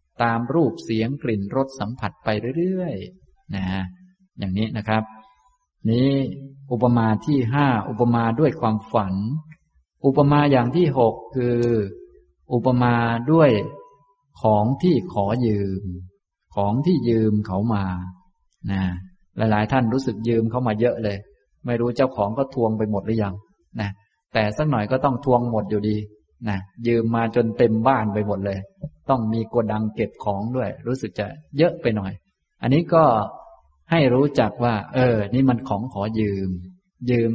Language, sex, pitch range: Thai, male, 105-130 Hz